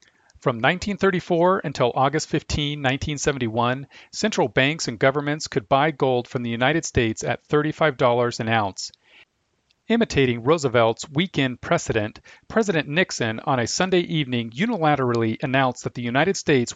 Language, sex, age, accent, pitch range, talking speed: English, male, 40-59, American, 115-145 Hz, 135 wpm